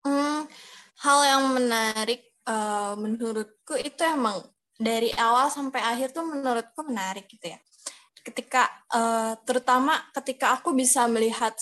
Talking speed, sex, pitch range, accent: 125 wpm, female, 215-260 Hz, native